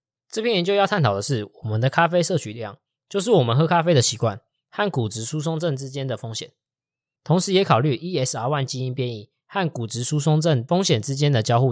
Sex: male